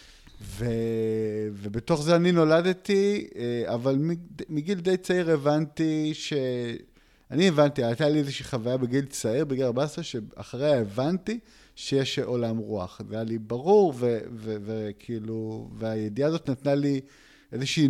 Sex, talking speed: male, 125 wpm